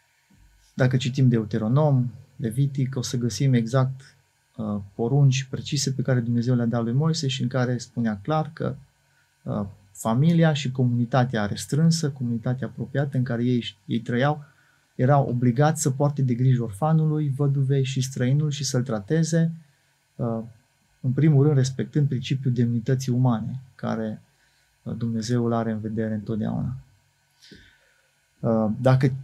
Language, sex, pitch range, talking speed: Romanian, male, 120-140 Hz, 140 wpm